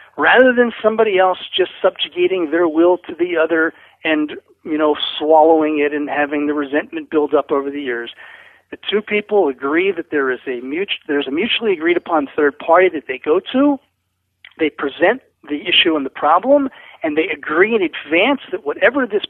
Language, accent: English, American